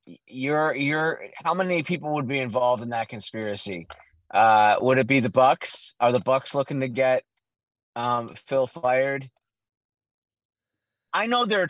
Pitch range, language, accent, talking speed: 120-155 Hz, English, American, 150 wpm